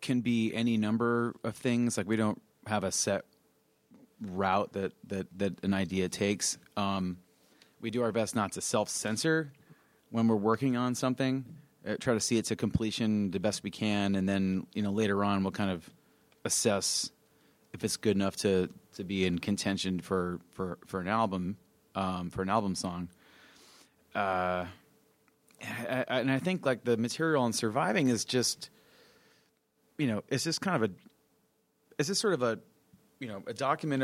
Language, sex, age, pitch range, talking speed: English, male, 30-49, 100-125 Hz, 175 wpm